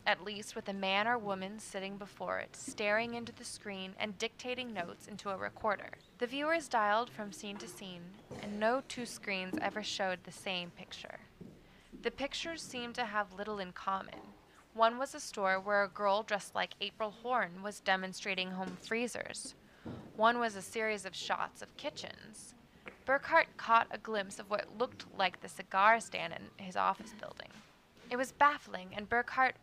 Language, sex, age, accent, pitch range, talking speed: English, female, 20-39, American, 195-230 Hz, 175 wpm